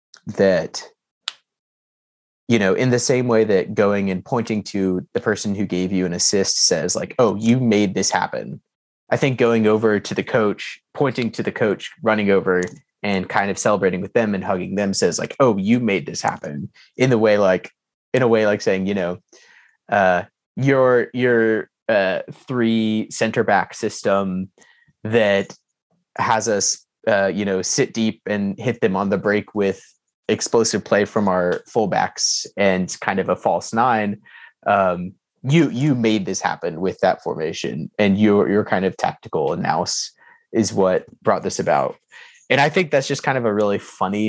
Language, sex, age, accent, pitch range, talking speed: English, male, 20-39, American, 100-120 Hz, 175 wpm